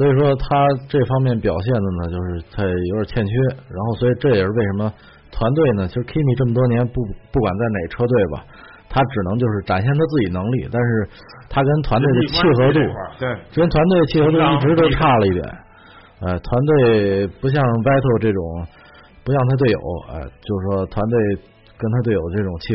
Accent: native